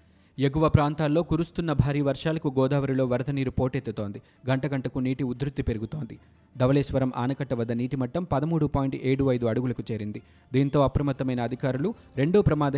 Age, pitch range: 20-39, 120-145 Hz